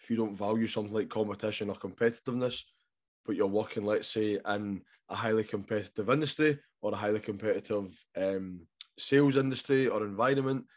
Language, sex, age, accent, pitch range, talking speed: English, male, 20-39, British, 105-120 Hz, 155 wpm